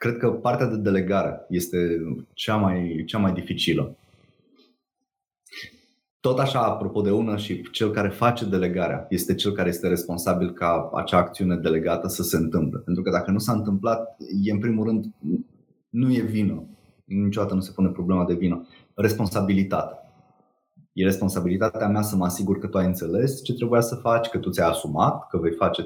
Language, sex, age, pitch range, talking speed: Romanian, male, 20-39, 95-120 Hz, 175 wpm